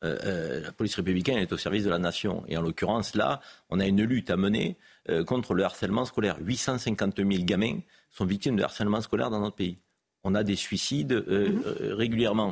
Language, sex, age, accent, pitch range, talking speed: French, male, 50-69, French, 100-140 Hz, 210 wpm